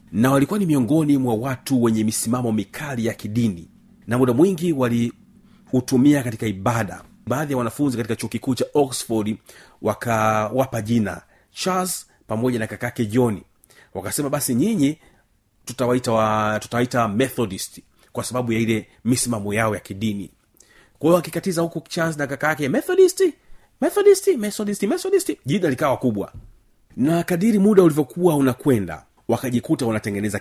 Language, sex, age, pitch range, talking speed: Swahili, male, 40-59, 105-135 Hz, 135 wpm